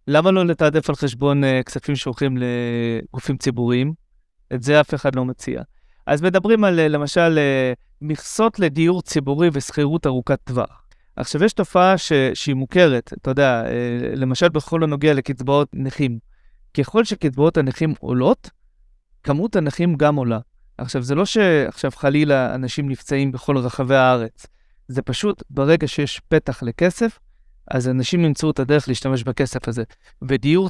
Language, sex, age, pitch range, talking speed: Hebrew, male, 30-49, 130-160 Hz, 135 wpm